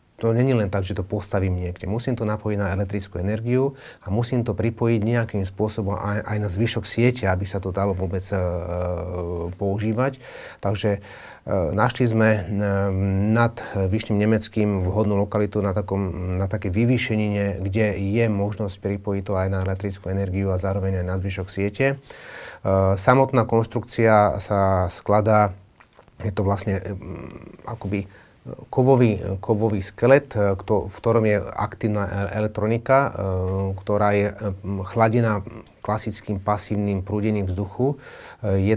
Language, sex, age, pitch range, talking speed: Slovak, male, 30-49, 100-110 Hz, 135 wpm